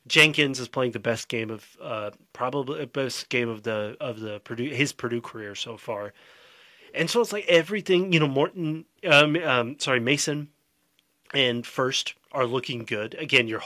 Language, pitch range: English, 120-155 Hz